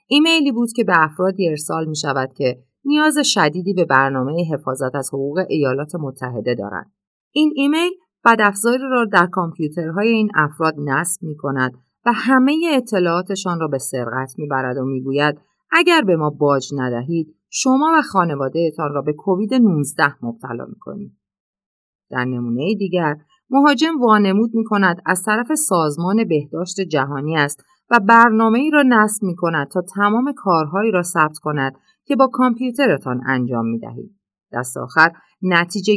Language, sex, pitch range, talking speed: Persian, female, 140-230 Hz, 150 wpm